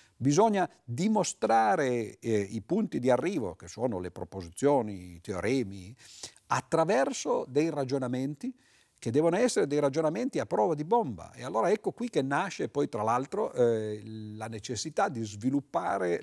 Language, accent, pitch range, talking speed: Italian, native, 105-155 Hz, 140 wpm